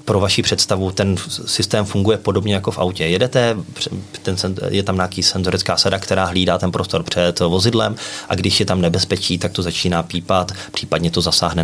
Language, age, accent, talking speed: Czech, 30-49, native, 180 wpm